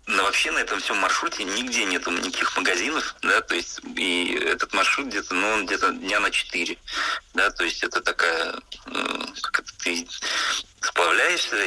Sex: male